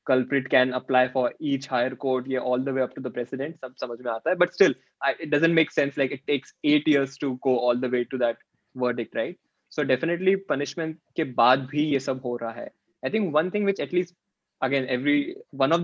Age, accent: 20-39, native